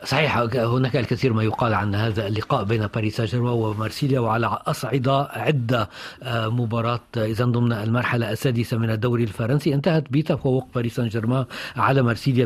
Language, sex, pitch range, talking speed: Arabic, male, 125-155 Hz, 150 wpm